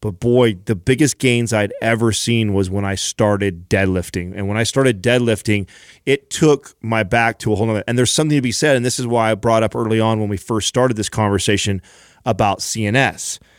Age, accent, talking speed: 30-49, American, 215 wpm